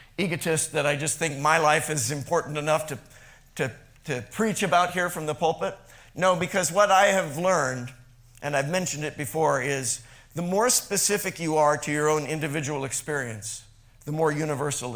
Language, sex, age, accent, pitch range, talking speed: English, male, 50-69, American, 125-170 Hz, 175 wpm